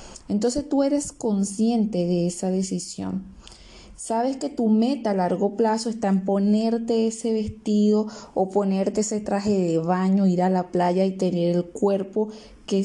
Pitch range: 195-240 Hz